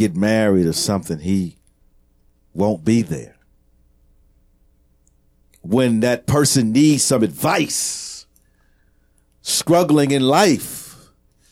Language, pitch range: English, 75-115 Hz